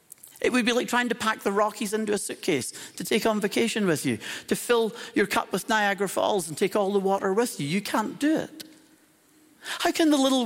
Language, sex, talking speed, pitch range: English, male, 230 wpm, 140-230 Hz